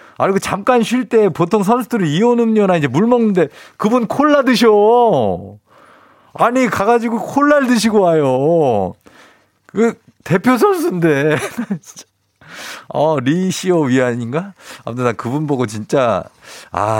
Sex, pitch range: male, 110-180 Hz